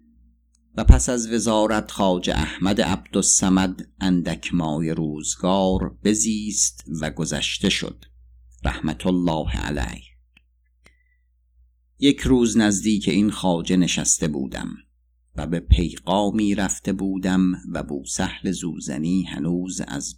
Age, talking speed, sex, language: 50-69, 105 wpm, male, Persian